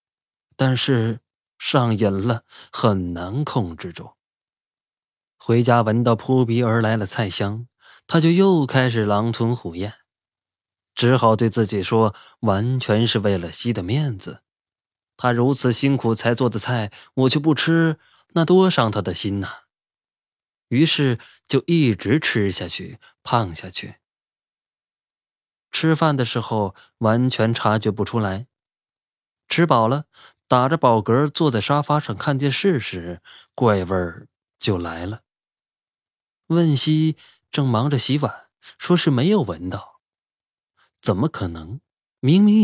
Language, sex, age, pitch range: Chinese, male, 20-39, 105-140 Hz